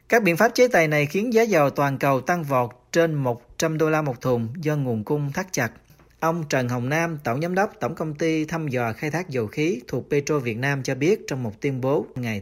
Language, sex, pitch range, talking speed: Vietnamese, male, 125-175 Hz, 245 wpm